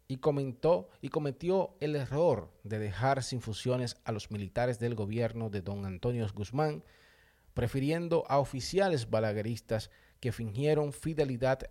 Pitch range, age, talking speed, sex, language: 100-140 Hz, 40-59, 135 wpm, male, Spanish